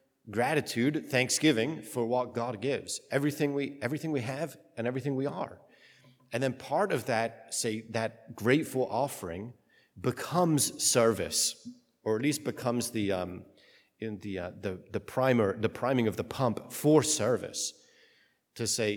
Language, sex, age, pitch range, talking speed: English, male, 40-59, 115-140 Hz, 150 wpm